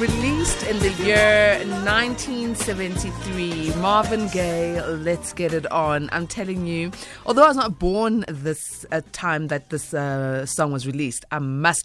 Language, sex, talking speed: English, female, 150 wpm